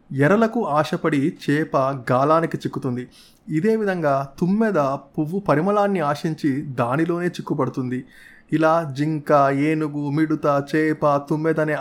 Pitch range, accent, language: 140-185 Hz, native, Telugu